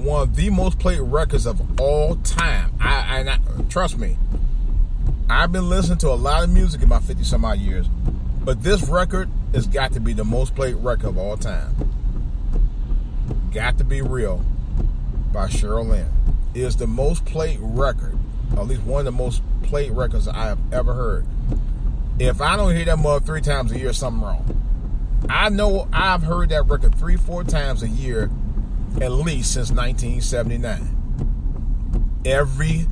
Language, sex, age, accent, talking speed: English, male, 30-49, American, 170 wpm